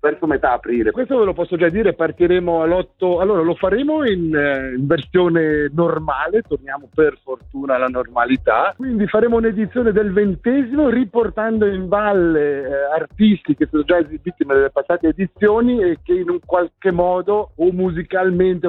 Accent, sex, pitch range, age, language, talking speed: native, male, 150-190 Hz, 50-69, Italian, 155 wpm